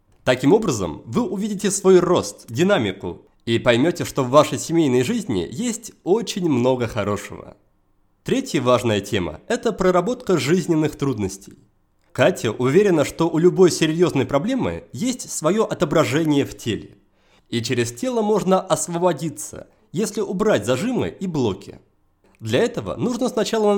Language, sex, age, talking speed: Russian, male, 30-49, 130 wpm